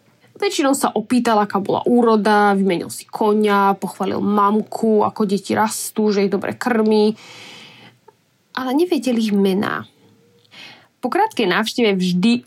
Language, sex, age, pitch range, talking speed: Slovak, female, 10-29, 200-245 Hz, 120 wpm